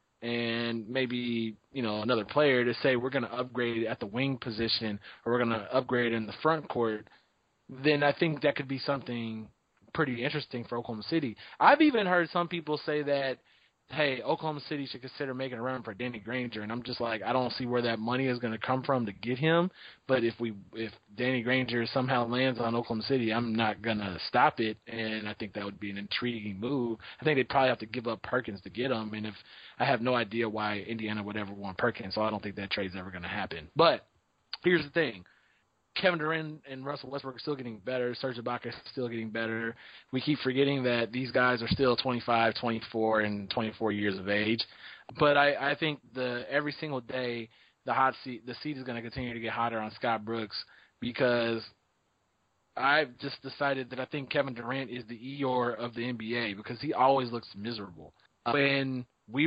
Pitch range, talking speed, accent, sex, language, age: 115-135 Hz, 215 wpm, American, male, English, 20-39